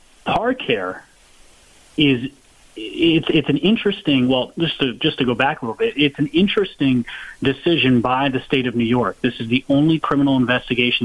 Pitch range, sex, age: 115-135 Hz, male, 30-49